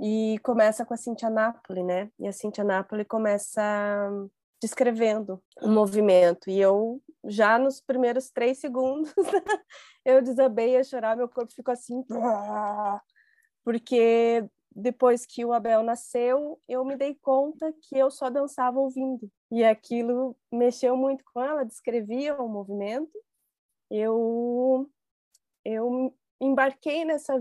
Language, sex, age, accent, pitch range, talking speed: Portuguese, female, 20-39, Brazilian, 215-260 Hz, 125 wpm